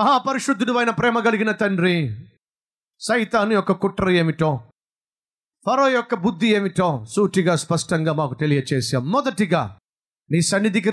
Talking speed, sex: 110 wpm, male